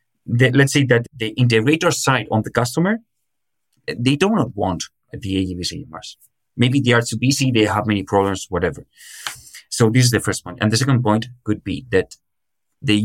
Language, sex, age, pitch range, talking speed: German, male, 30-49, 100-125 Hz, 185 wpm